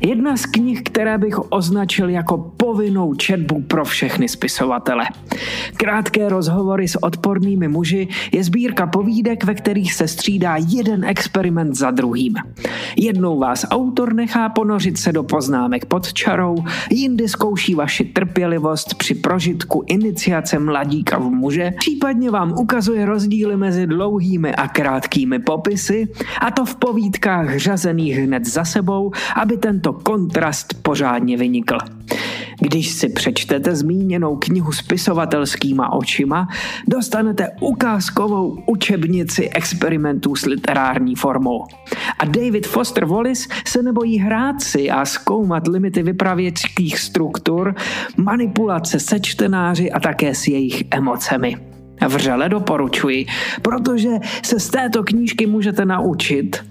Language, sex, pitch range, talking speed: Czech, male, 165-220 Hz, 120 wpm